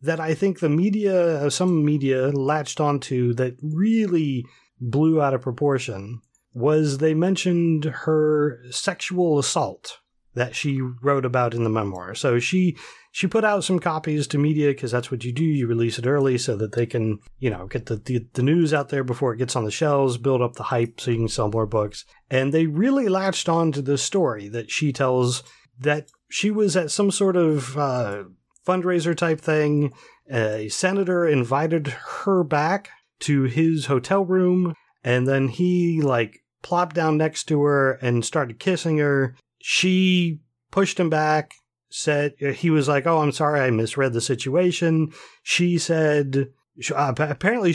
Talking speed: 170 wpm